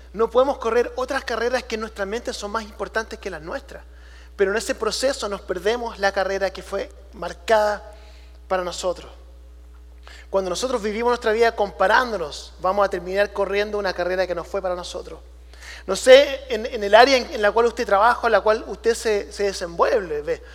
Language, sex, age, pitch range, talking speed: English, male, 30-49, 205-260 Hz, 185 wpm